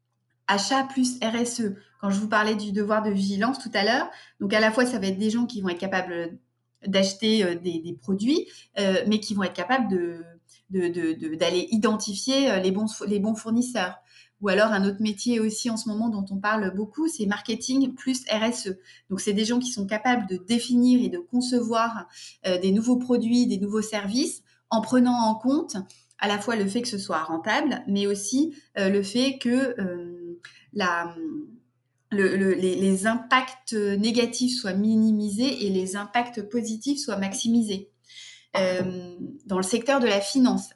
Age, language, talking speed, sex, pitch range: 30-49, French, 180 wpm, female, 195-240 Hz